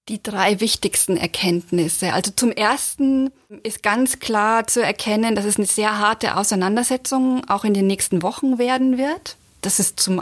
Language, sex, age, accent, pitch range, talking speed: German, female, 30-49, German, 200-240 Hz, 165 wpm